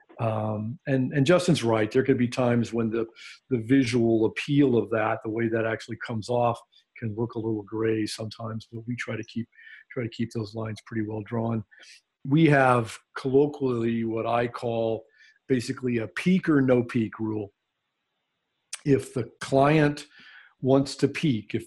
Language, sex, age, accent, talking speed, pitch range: English, male, 50-69, American, 170 wpm, 115-130 Hz